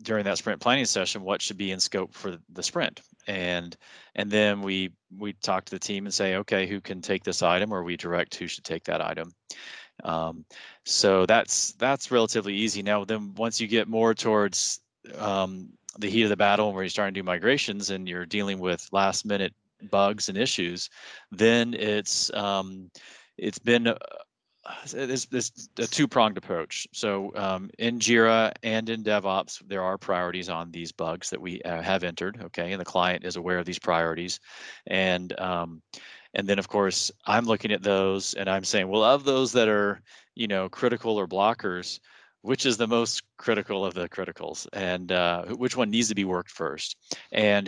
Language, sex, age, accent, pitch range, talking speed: English, male, 30-49, American, 90-105 Hz, 190 wpm